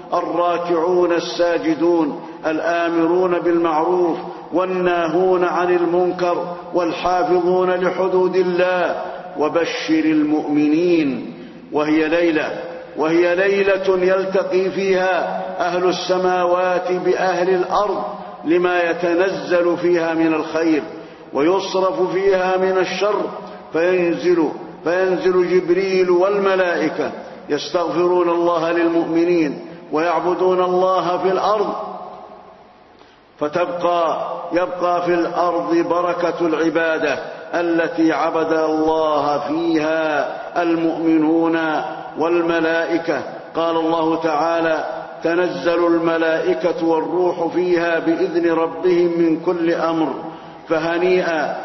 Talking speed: 75 wpm